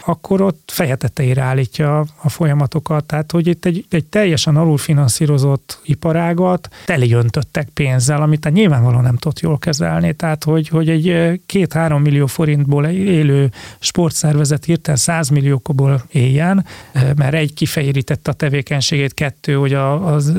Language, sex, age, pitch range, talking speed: Hungarian, male, 30-49, 135-160 Hz, 130 wpm